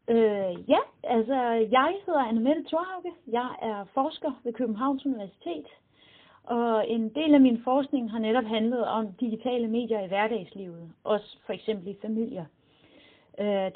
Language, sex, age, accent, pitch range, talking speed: Danish, female, 30-49, native, 215-275 Hz, 145 wpm